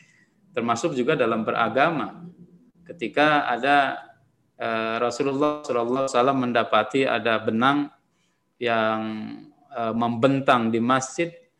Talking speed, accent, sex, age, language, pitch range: 90 wpm, native, male, 20-39, Indonesian, 115-160 Hz